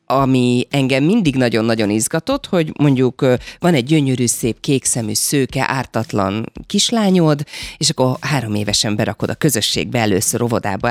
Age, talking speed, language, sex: 30-49, 130 wpm, Hungarian, female